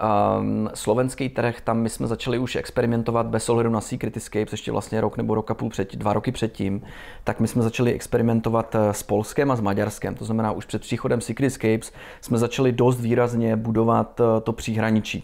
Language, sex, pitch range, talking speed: Slovak, male, 105-115 Hz, 185 wpm